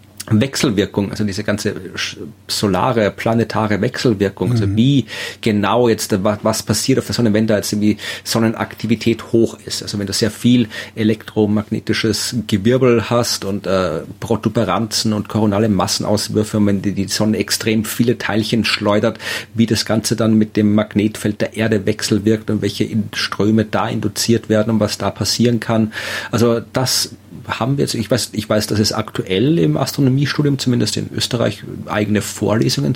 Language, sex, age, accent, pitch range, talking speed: German, male, 40-59, German, 105-115 Hz, 155 wpm